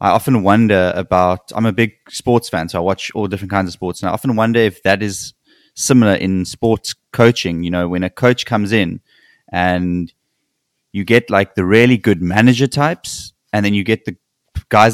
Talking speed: 200 wpm